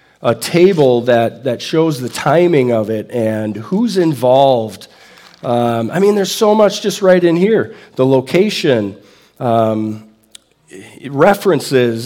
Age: 40-59